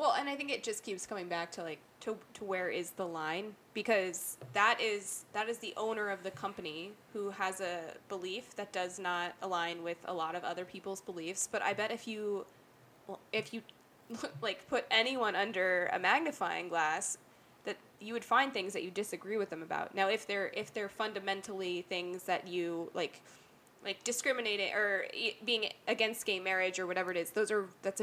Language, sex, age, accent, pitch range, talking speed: English, female, 20-39, American, 180-215 Hz, 200 wpm